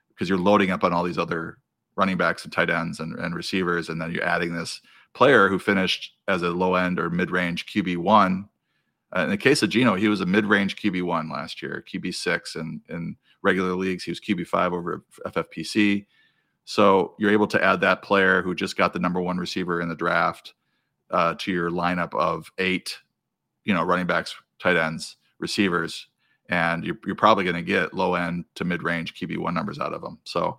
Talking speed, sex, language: 200 wpm, male, English